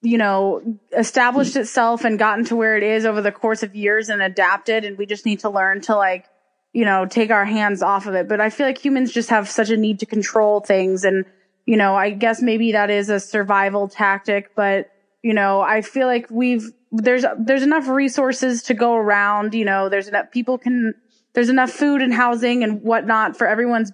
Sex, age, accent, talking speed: female, 20-39, American, 215 wpm